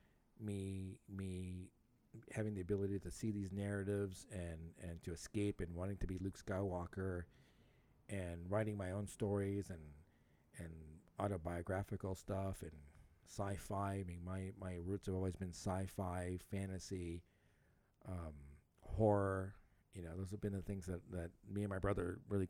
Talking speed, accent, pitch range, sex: 150 wpm, American, 90-110 Hz, male